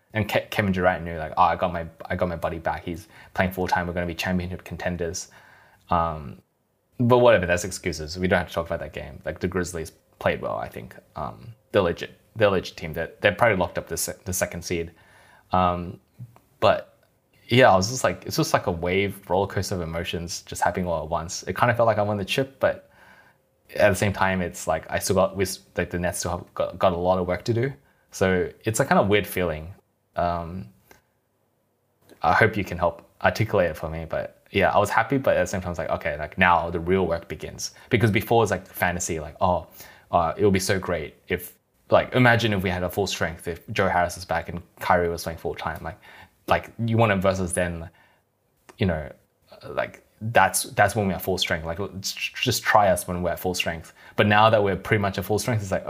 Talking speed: 235 wpm